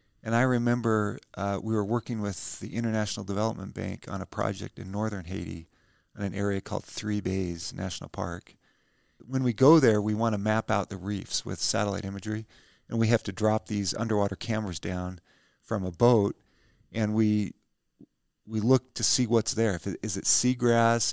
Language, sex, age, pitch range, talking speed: English, male, 50-69, 100-120 Hz, 185 wpm